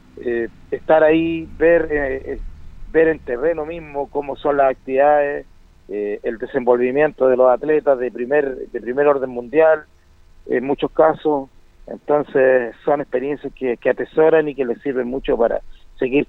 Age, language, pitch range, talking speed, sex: 50-69, Spanish, 125-155 Hz, 155 wpm, male